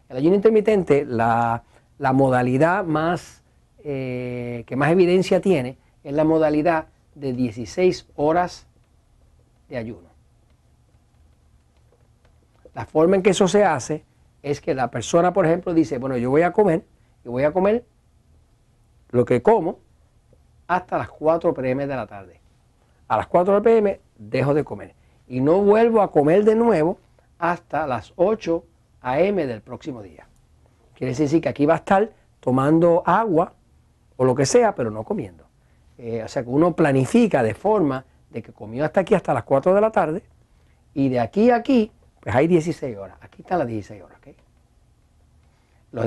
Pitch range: 125-180 Hz